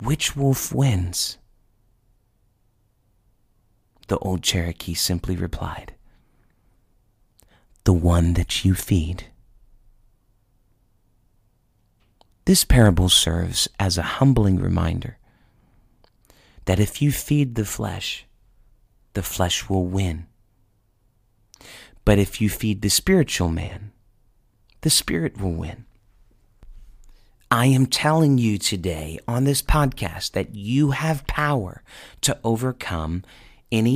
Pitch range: 95-115 Hz